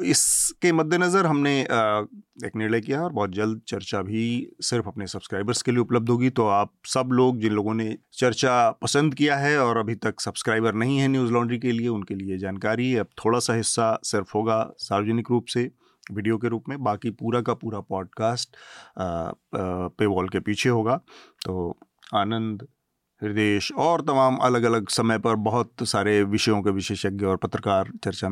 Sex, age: male, 30-49